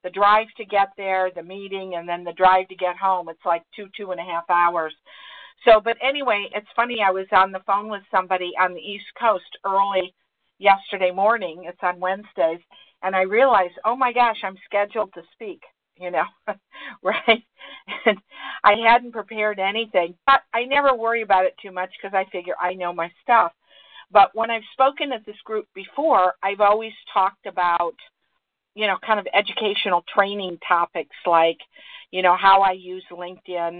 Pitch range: 180-215 Hz